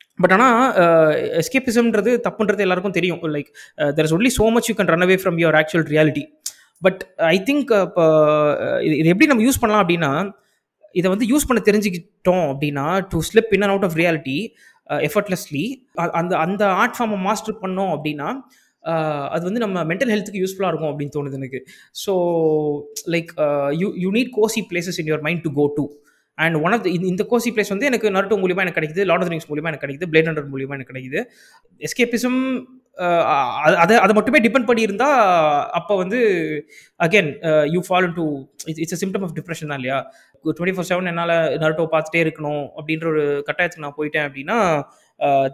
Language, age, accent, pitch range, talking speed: Tamil, 20-39, native, 155-215 Hz, 165 wpm